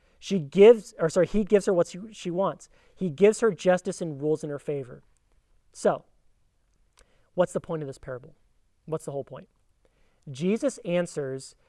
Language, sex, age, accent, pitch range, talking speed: English, male, 30-49, American, 145-190 Hz, 165 wpm